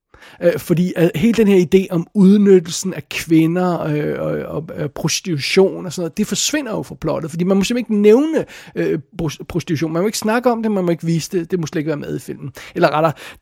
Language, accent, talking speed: Danish, native, 210 wpm